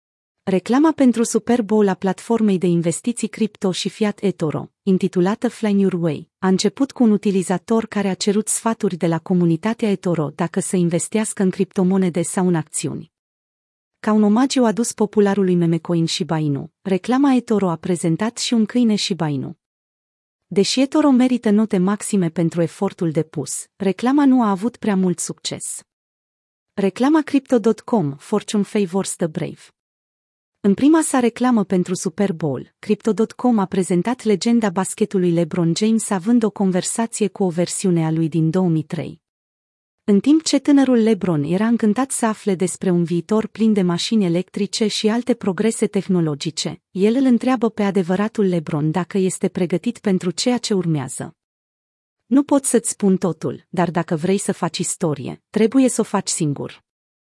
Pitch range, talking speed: 175-225 Hz, 155 wpm